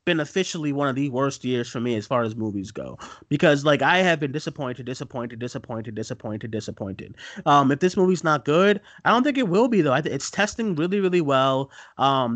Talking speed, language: 215 wpm, English